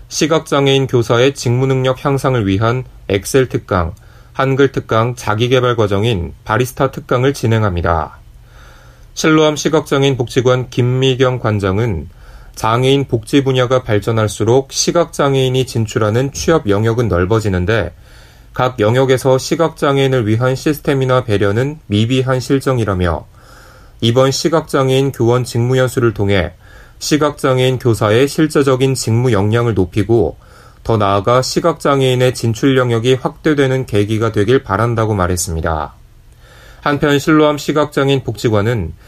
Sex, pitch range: male, 105-135 Hz